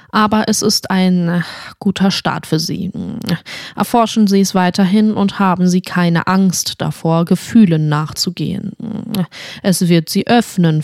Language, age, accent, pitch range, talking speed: German, 20-39, German, 170-215 Hz, 135 wpm